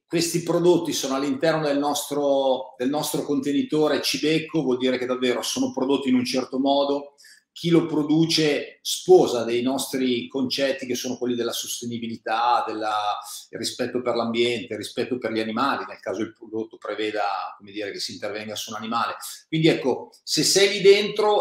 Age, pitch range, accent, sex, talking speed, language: 40-59, 130-170 Hz, native, male, 155 wpm, Italian